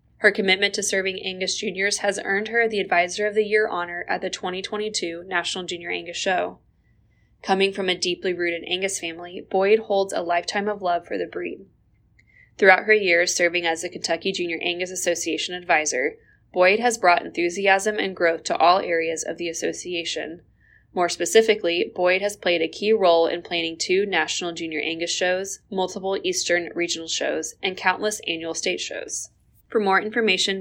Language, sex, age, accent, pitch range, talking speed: English, female, 10-29, American, 175-200 Hz, 175 wpm